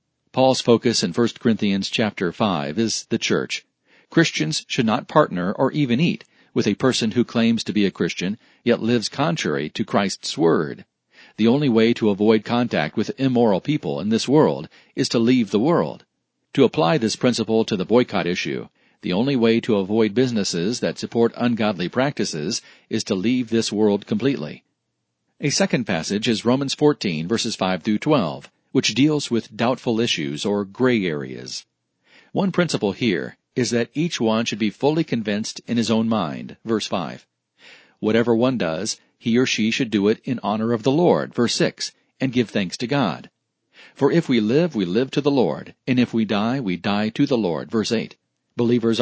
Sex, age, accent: male, 50-69, American